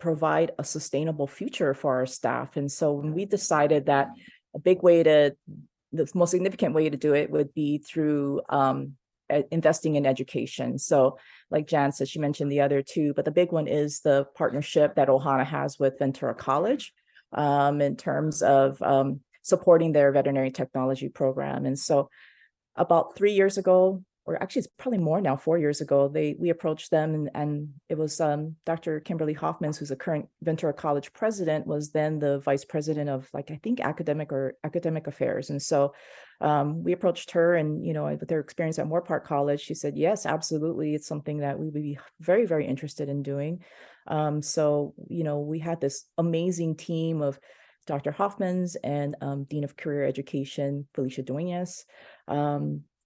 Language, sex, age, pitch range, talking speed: English, female, 30-49, 140-165 Hz, 180 wpm